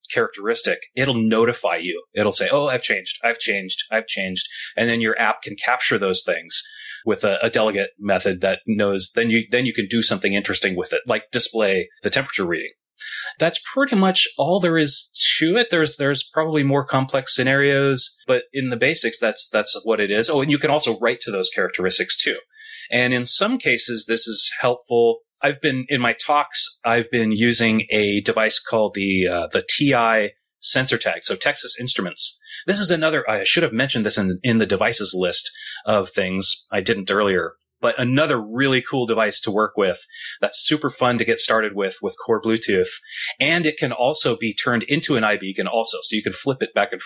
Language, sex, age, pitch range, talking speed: English, male, 30-49, 115-165 Hz, 200 wpm